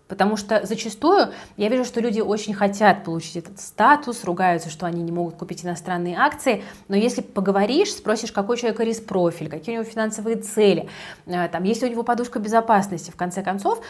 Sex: female